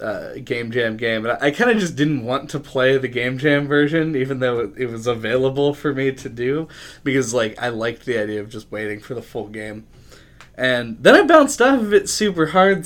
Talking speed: 230 wpm